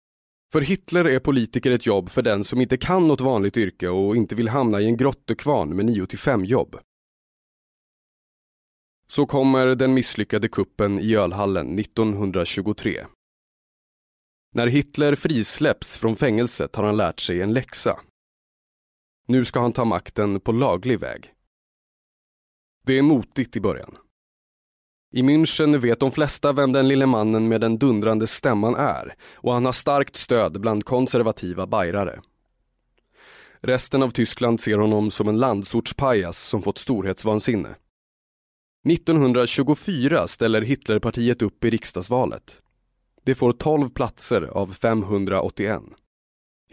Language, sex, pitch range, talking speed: Swedish, male, 105-135 Hz, 130 wpm